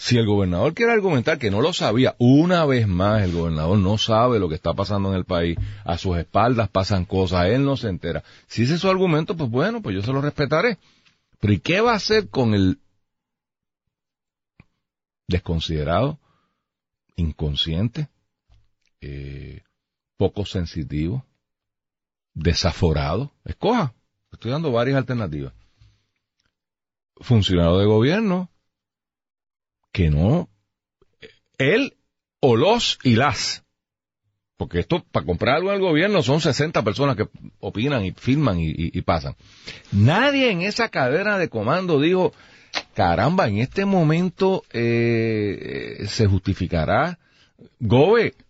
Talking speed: 130 wpm